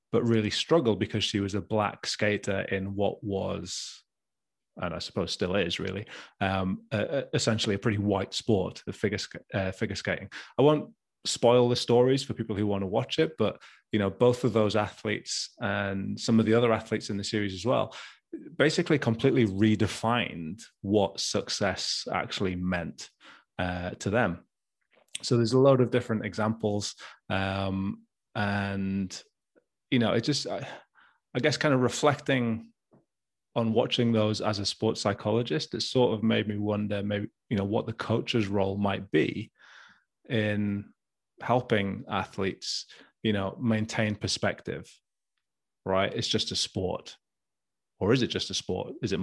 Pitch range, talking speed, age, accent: 100-115 Hz, 160 wpm, 30-49, British